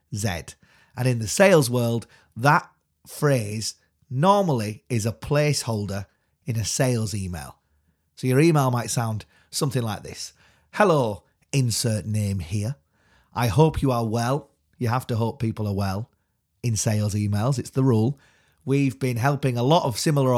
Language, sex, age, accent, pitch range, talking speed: English, male, 30-49, British, 105-140 Hz, 155 wpm